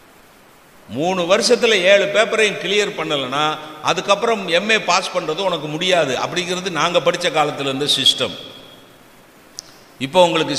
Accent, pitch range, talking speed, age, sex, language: native, 140-185 Hz, 115 wpm, 60-79, male, Tamil